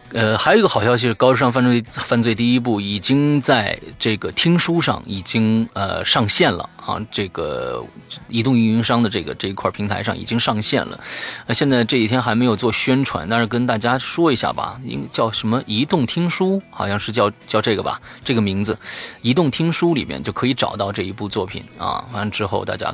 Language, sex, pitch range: Chinese, male, 100-125 Hz